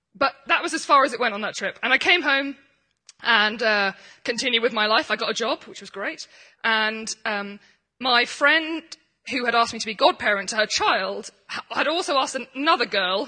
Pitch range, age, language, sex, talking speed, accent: 220-290 Hz, 20-39, English, female, 210 wpm, British